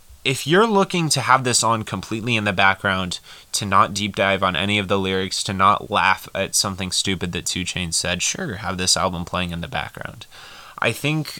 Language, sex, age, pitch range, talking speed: English, male, 20-39, 95-110 Hz, 210 wpm